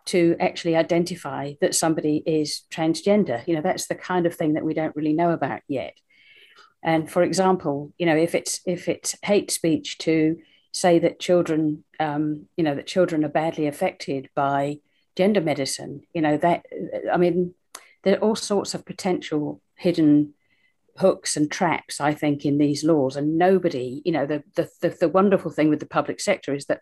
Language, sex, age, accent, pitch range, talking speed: English, female, 50-69, British, 150-185 Hz, 185 wpm